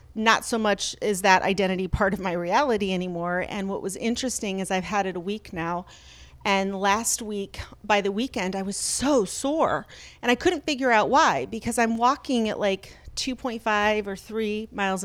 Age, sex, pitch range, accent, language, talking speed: 40-59, female, 195-240 Hz, American, English, 185 wpm